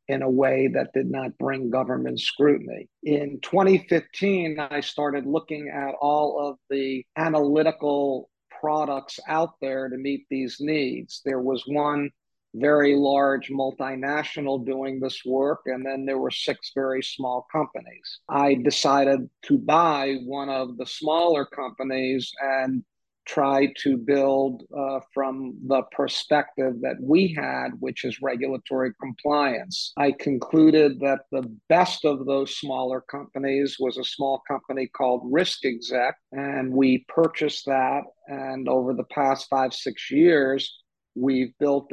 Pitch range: 130-145 Hz